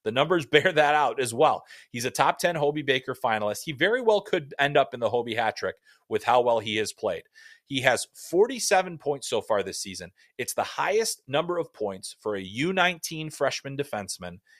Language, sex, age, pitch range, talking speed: English, male, 30-49, 120-175 Hz, 205 wpm